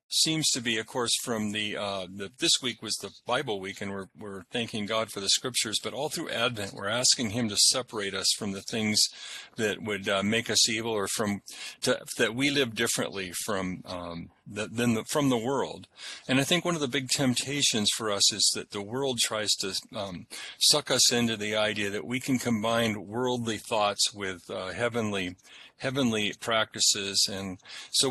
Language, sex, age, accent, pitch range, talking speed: English, male, 40-59, American, 100-125 Hz, 190 wpm